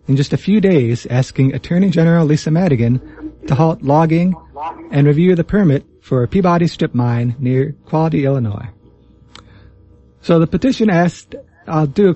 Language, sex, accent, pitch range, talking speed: English, male, American, 125-165 Hz, 160 wpm